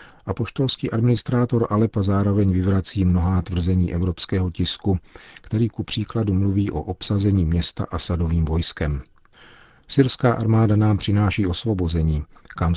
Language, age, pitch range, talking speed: Czech, 50-69, 90-110 Hz, 115 wpm